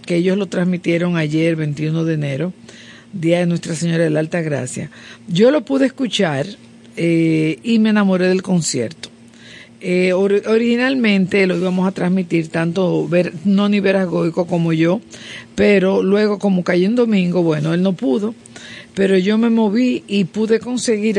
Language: Spanish